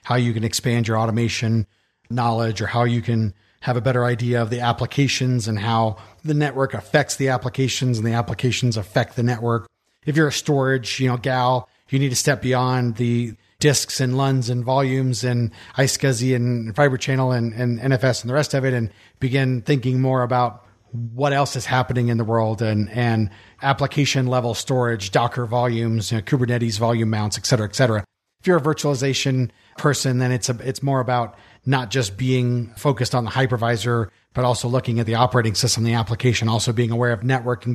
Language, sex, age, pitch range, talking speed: English, male, 40-59, 115-135 Hz, 195 wpm